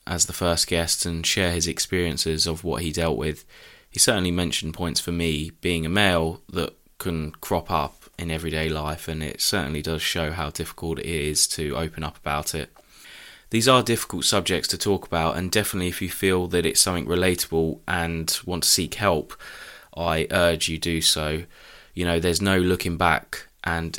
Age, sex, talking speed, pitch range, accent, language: 20-39, male, 190 wpm, 80-90 Hz, British, English